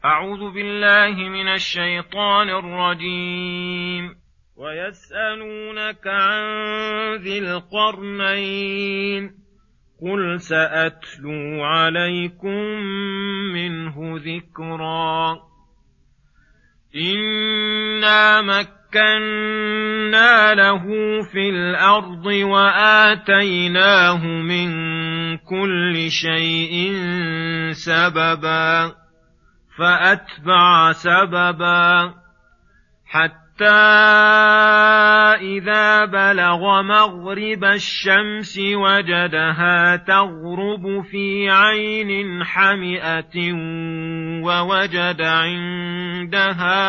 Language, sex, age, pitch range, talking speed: Arabic, male, 40-59, 170-205 Hz, 50 wpm